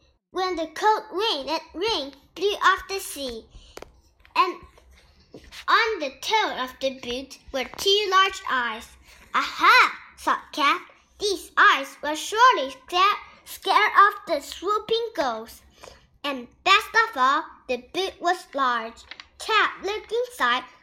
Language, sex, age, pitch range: Chinese, male, 10-29, 290-425 Hz